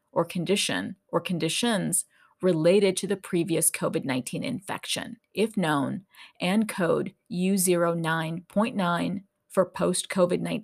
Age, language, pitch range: 30-49, English, 175-210 Hz